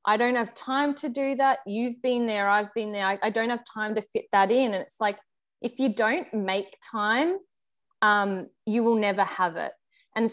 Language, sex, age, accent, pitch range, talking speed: English, female, 20-39, Australian, 195-225 Hz, 215 wpm